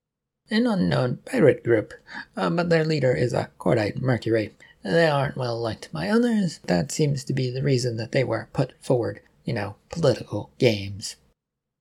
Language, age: English, 30-49